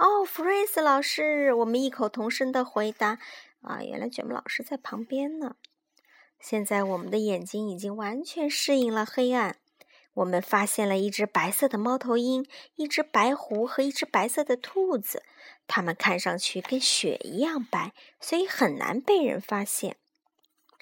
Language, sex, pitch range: Chinese, male, 215-320 Hz